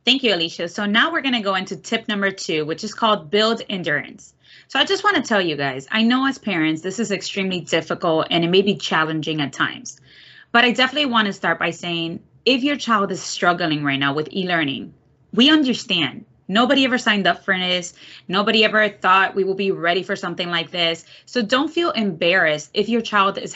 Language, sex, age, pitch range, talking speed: English, female, 20-39, 170-235 Hz, 210 wpm